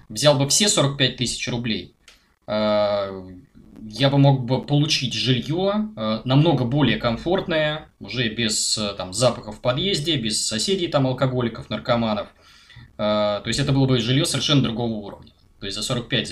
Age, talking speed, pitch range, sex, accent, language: 20-39, 145 wpm, 110-140 Hz, male, native, Russian